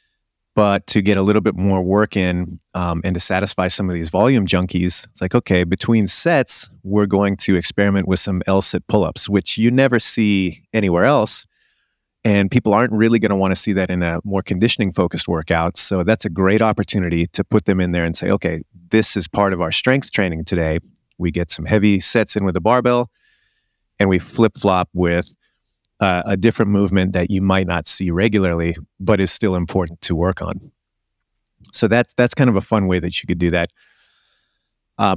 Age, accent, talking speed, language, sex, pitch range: 30-49, American, 200 wpm, German, male, 90-105 Hz